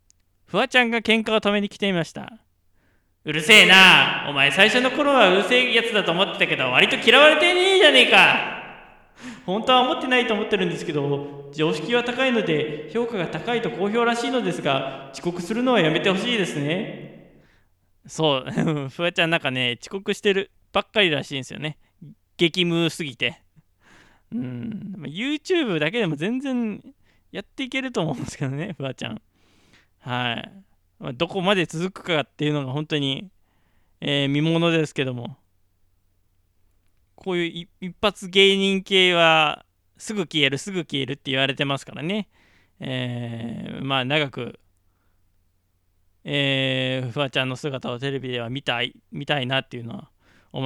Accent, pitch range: native, 125-200 Hz